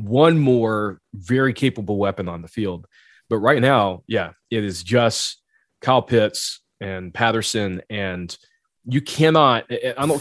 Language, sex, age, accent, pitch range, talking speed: English, male, 30-49, American, 100-130 Hz, 140 wpm